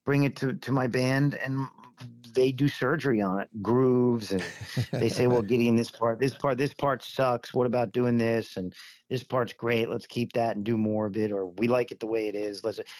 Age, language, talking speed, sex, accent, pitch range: 40-59, English, 230 wpm, male, American, 105-130 Hz